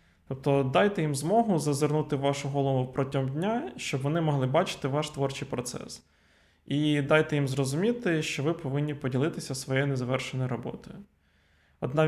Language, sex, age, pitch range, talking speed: Ukrainian, male, 20-39, 130-155 Hz, 145 wpm